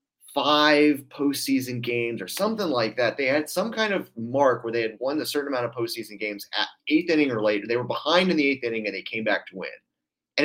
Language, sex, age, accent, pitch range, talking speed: English, male, 30-49, American, 115-155 Hz, 240 wpm